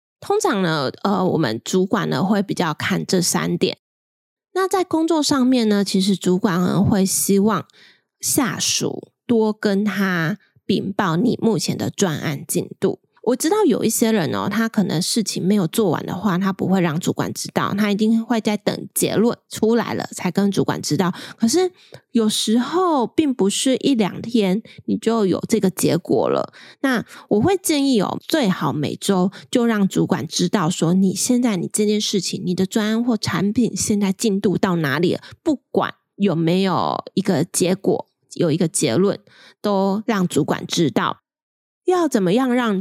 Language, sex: Chinese, female